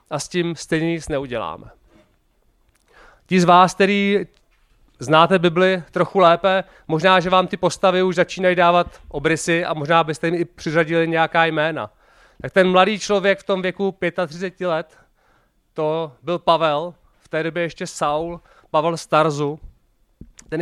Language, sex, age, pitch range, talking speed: Czech, male, 30-49, 160-185 Hz, 150 wpm